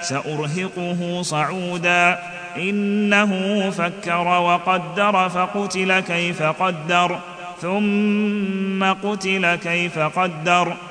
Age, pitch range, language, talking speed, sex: 30-49, 175-200 Hz, Arabic, 65 wpm, male